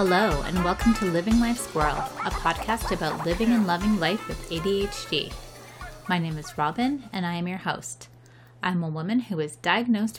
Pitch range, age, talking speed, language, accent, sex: 175-235 Hz, 30-49, 185 wpm, English, American, female